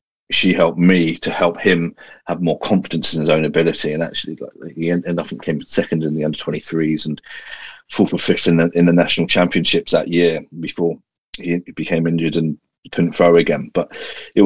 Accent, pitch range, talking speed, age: British, 80-85 Hz, 200 wpm, 40-59